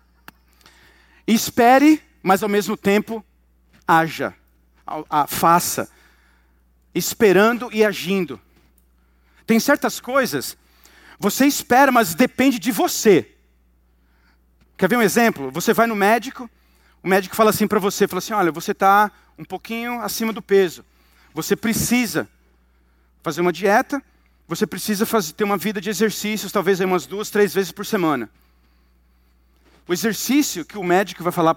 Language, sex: Portuguese, male